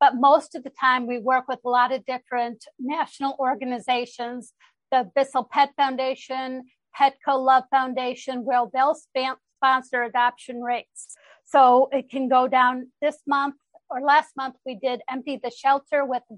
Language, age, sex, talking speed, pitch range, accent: English, 50-69, female, 160 wpm, 245-275 Hz, American